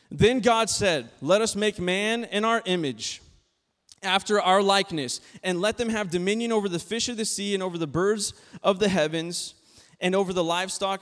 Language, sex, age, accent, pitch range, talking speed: English, male, 20-39, American, 150-195 Hz, 190 wpm